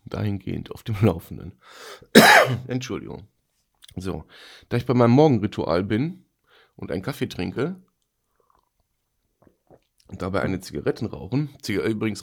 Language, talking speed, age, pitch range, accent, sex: German, 115 wpm, 40-59, 95-120 Hz, German, male